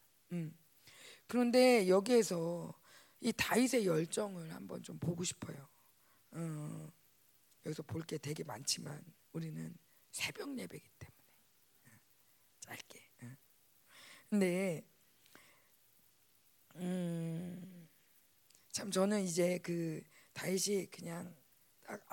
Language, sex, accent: Korean, female, native